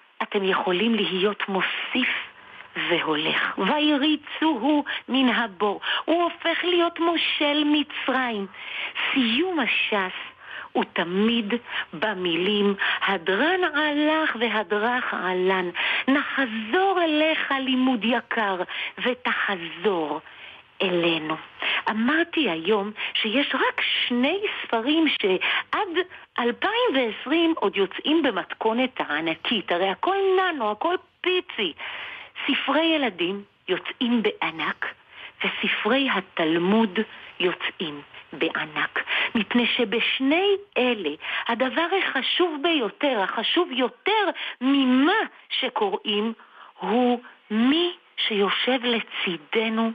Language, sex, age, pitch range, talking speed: Hebrew, female, 50-69, 210-320 Hz, 80 wpm